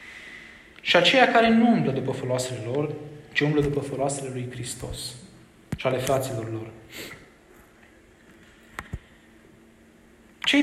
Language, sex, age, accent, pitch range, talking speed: Romanian, male, 20-39, native, 135-195 Hz, 105 wpm